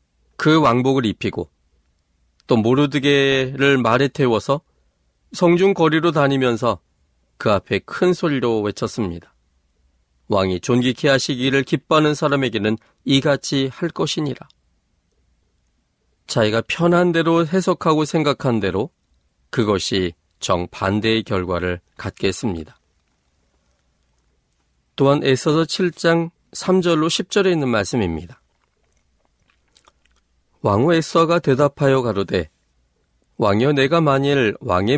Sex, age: male, 40-59